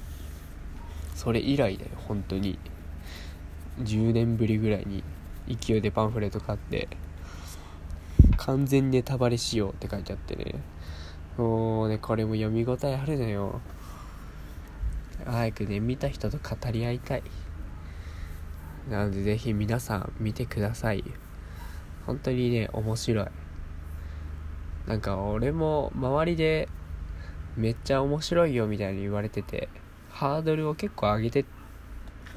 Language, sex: Japanese, male